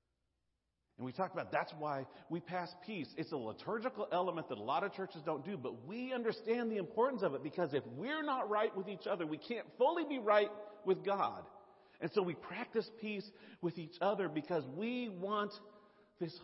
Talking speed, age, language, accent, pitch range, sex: 195 wpm, 40-59, English, American, 115-175 Hz, male